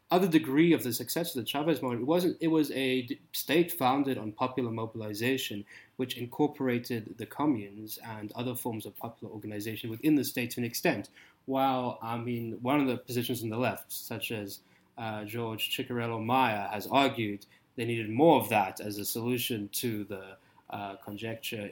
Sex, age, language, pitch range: male, 20-39, English, 105-130 Hz